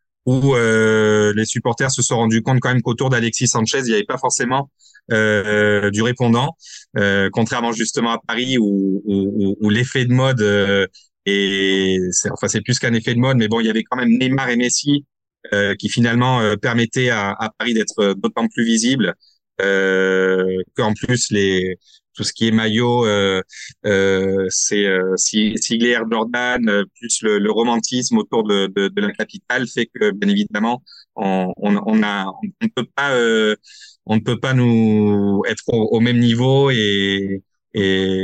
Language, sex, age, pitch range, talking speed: French, male, 30-49, 100-125 Hz, 180 wpm